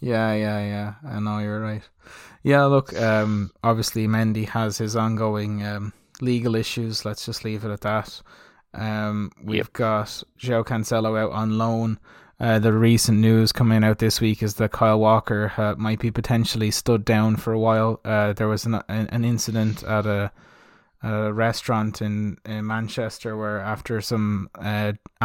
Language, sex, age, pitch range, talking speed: English, male, 20-39, 105-115 Hz, 170 wpm